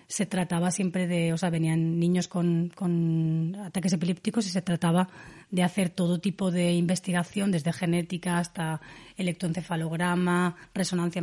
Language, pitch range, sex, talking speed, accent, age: Spanish, 175-215 Hz, female, 140 wpm, Spanish, 30-49